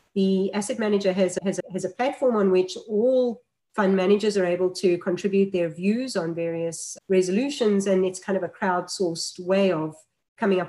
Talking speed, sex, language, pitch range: 175 wpm, female, English, 175-210 Hz